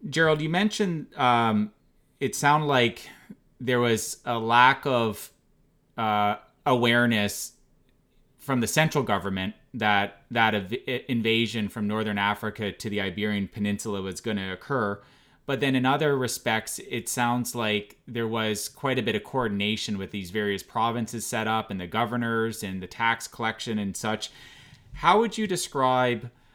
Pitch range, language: 105-125 Hz, English